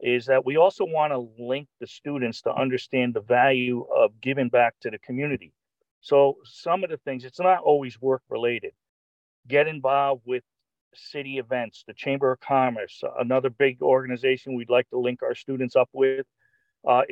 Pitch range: 120-140 Hz